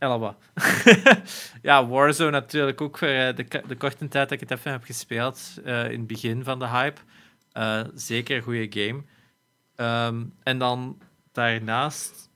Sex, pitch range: male, 115-140 Hz